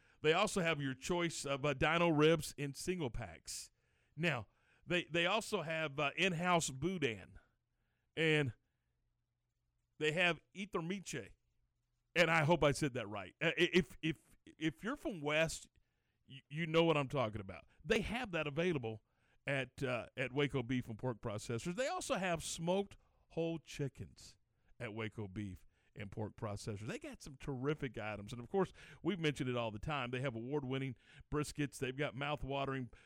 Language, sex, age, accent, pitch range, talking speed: English, male, 50-69, American, 120-165 Hz, 165 wpm